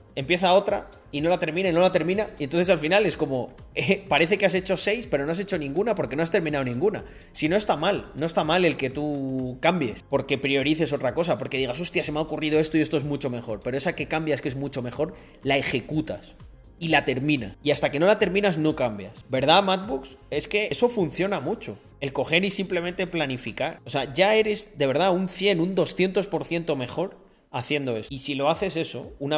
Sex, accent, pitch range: male, Spanish, 140-185 Hz